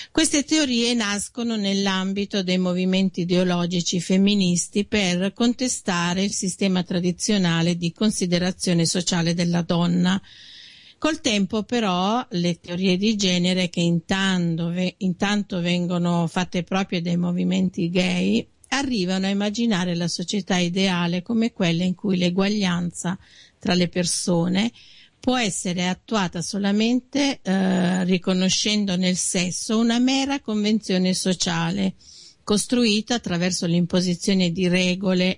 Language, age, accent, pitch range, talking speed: Italian, 50-69, native, 180-210 Hz, 110 wpm